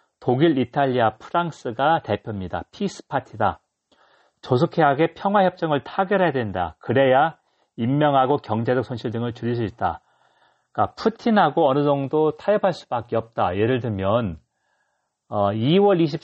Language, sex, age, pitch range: Korean, male, 40-59, 115-165 Hz